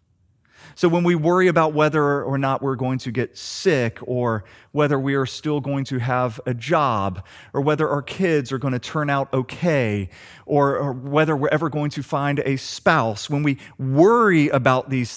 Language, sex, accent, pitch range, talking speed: English, male, American, 105-145 Hz, 185 wpm